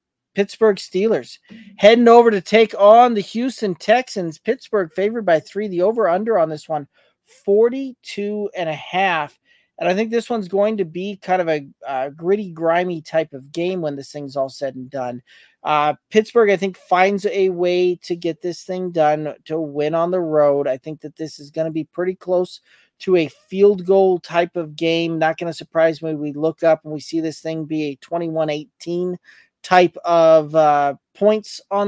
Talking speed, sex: 185 wpm, male